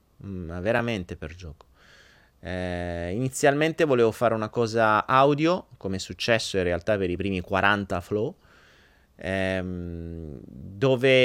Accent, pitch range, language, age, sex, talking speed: native, 95-135 Hz, Italian, 30-49, male, 115 wpm